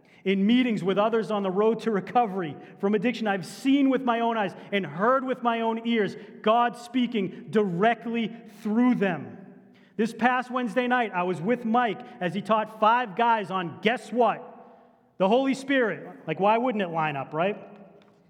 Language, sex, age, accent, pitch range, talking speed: English, male, 30-49, American, 175-230 Hz, 175 wpm